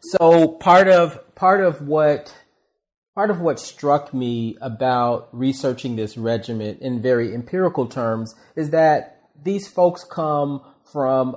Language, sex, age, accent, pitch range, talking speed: English, male, 40-59, American, 120-150 Hz, 130 wpm